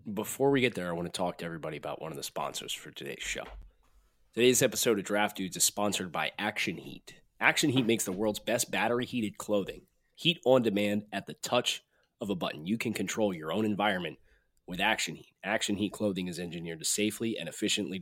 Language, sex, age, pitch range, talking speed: English, male, 30-49, 90-110 Hz, 210 wpm